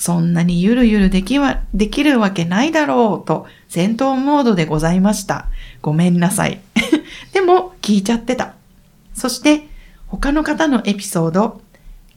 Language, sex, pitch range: Japanese, female, 175-255 Hz